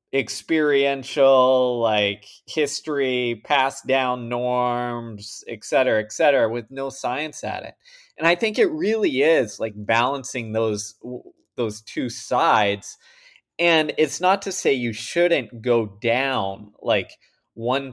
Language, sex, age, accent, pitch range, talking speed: English, male, 20-39, American, 110-140 Hz, 125 wpm